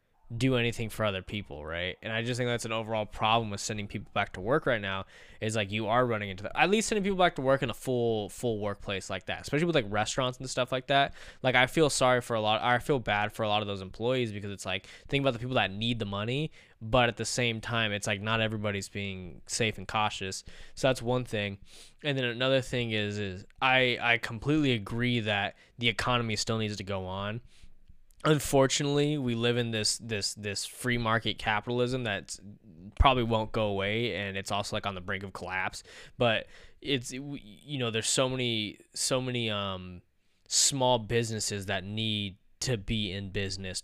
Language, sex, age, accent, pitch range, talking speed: English, male, 10-29, American, 105-125 Hz, 210 wpm